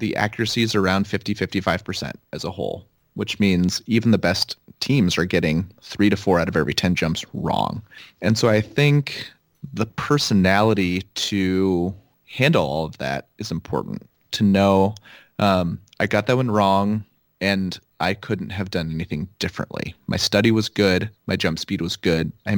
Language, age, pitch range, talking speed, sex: English, 30-49, 90-110 Hz, 170 wpm, male